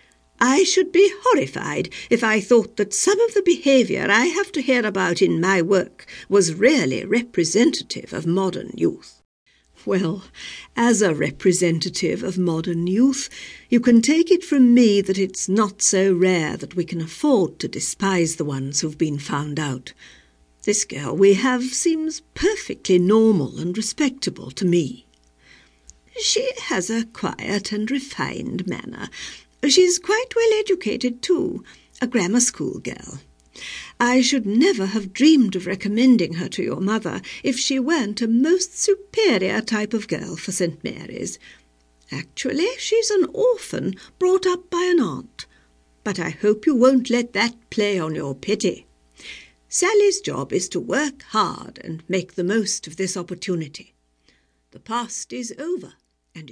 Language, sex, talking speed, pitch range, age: English, female, 155 wpm, 175-280 Hz, 50-69